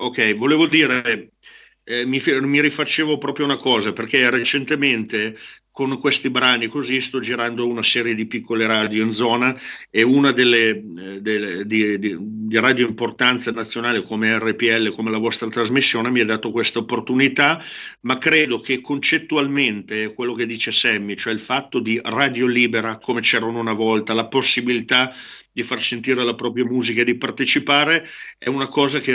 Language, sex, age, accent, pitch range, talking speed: Italian, male, 50-69, native, 115-130 Hz, 165 wpm